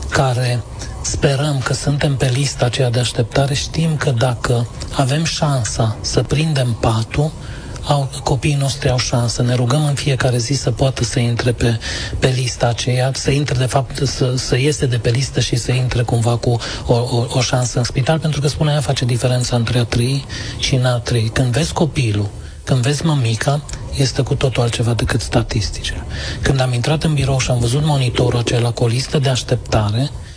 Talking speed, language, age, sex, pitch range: 185 wpm, Romanian, 30-49, male, 120-145 Hz